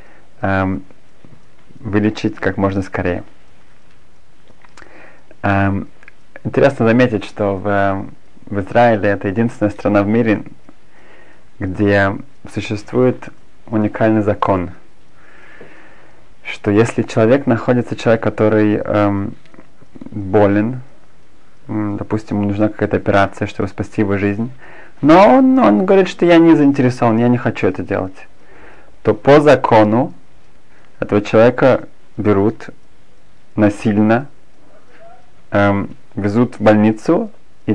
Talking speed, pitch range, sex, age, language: 95 wpm, 100-120 Hz, male, 30-49, Russian